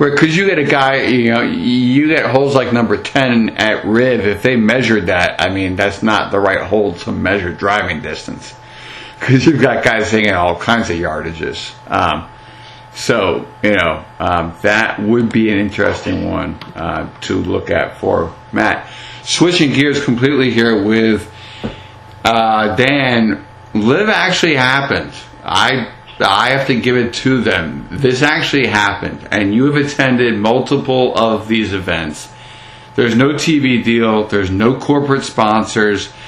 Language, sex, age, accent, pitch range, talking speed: English, male, 50-69, American, 105-130 Hz, 155 wpm